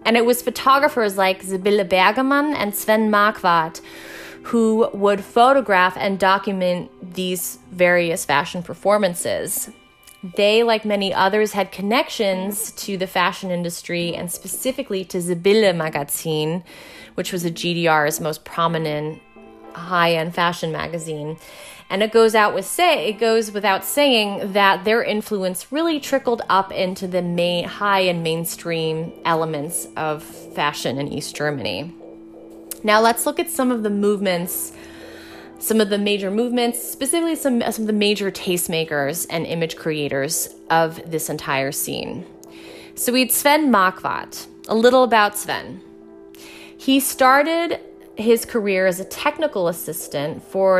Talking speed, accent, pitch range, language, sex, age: 140 wpm, American, 165-215 Hz, English, female, 20-39